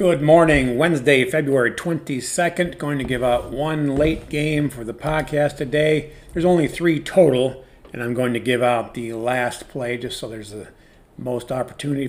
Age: 40-59